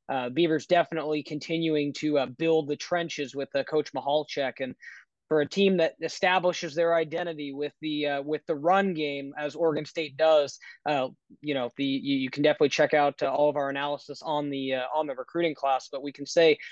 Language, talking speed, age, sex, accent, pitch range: English, 210 wpm, 20-39, male, American, 150-195 Hz